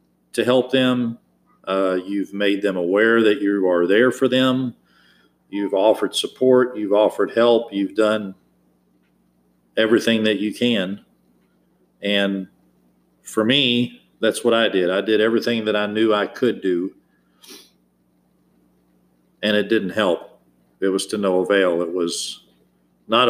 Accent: American